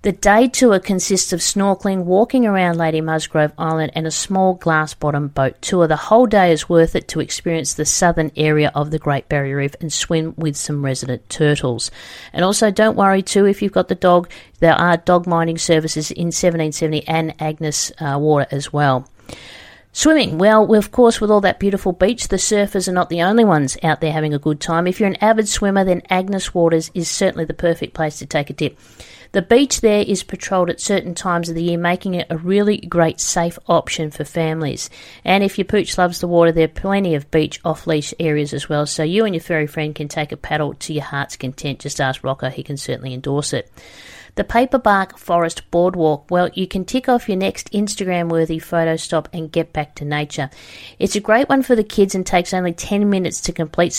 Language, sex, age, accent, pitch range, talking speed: English, female, 50-69, Australian, 155-195 Hz, 215 wpm